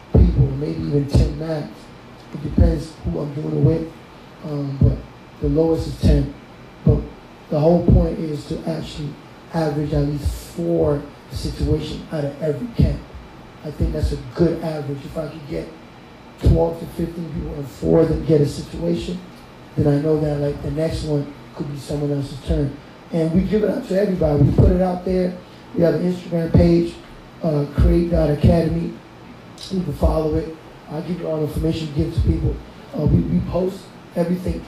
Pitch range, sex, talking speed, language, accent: 150-175 Hz, male, 185 wpm, English, American